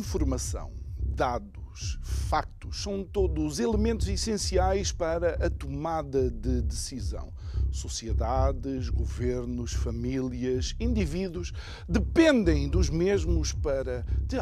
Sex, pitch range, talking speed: male, 80-125 Hz, 85 wpm